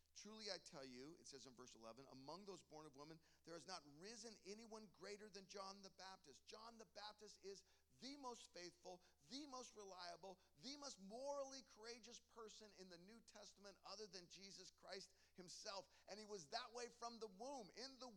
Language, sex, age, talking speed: English, male, 50-69, 190 wpm